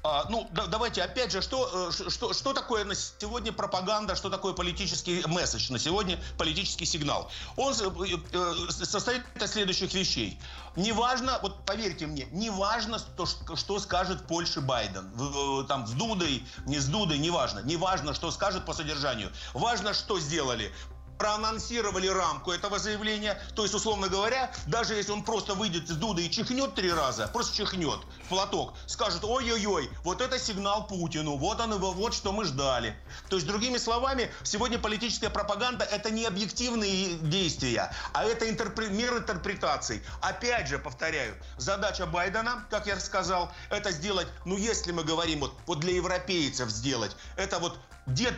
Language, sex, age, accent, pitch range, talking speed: Russian, male, 50-69, native, 175-215 Hz, 160 wpm